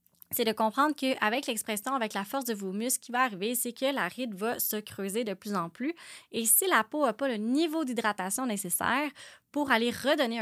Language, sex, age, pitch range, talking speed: French, female, 20-39, 210-265 Hz, 225 wpm